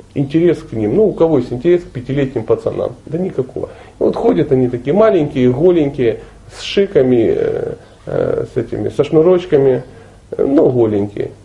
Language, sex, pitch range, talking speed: Russian, male, 125-190 Hz, 135 wpm